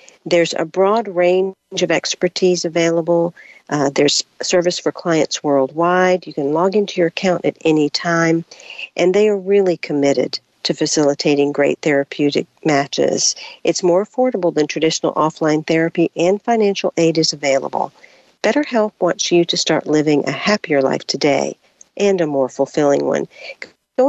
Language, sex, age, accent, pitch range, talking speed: English, female, 50-69, American, 150-195 Hz, 150 wpm